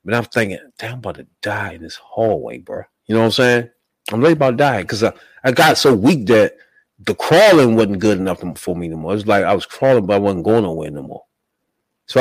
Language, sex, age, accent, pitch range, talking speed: English, male, 30-49, American, 100-140 Hz, 255 wpm